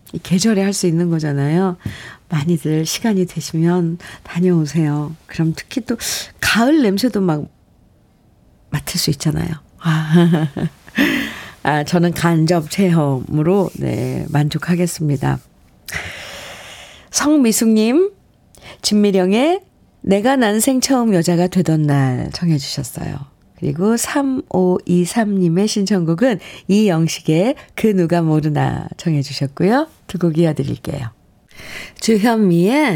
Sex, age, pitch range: female, 50-69, 155-205 Hz